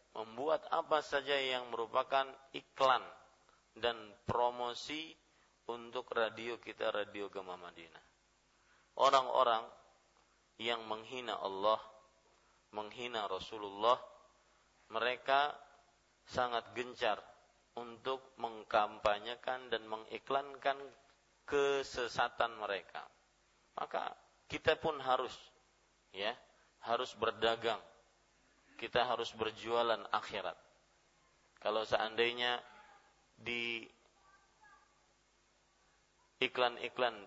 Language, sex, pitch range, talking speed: Malay, male, 110-125 Hz, 70 wpm